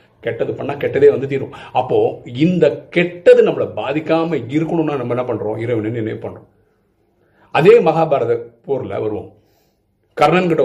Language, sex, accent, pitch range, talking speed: Tamil, male, native, 115-195 Hz, 125 wpm